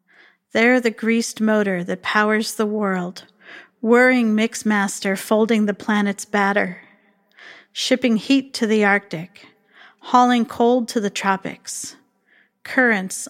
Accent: American